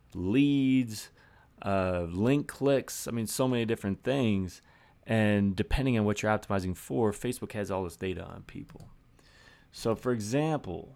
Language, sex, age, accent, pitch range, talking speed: English, male, 30-49, American, 95-125 Hz, 150 wpm